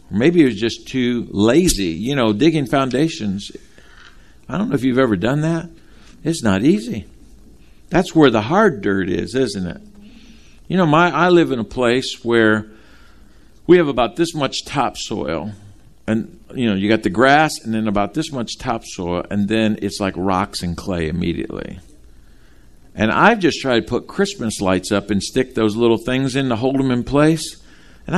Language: English